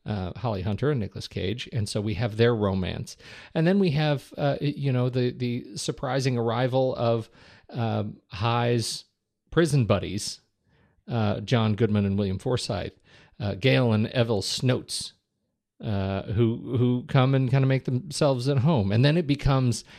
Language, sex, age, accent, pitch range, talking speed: English, male, 50-69, American, 105-135 Hz, 165 wpm